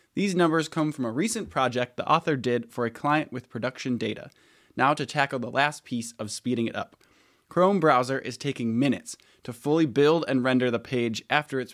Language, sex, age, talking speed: English, male, 20-39, 205 wpm